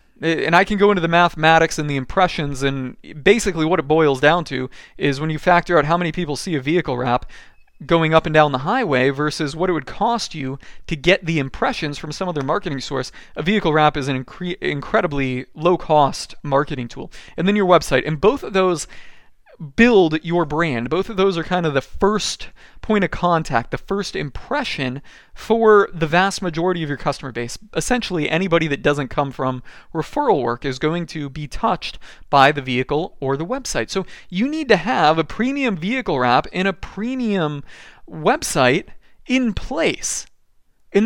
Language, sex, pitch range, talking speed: English, male, 145-200 Hz, 185 wpm